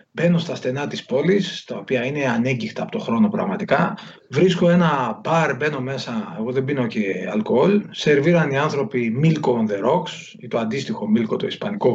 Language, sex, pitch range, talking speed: Greek, male, 130-205 Hz, 175 wpm